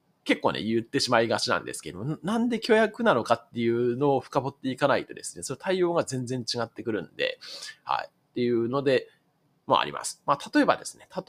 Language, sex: Japanese, male